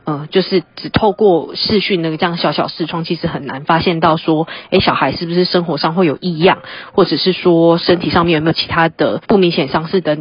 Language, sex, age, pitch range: Chinese, female, 20-39, 165-185 Hz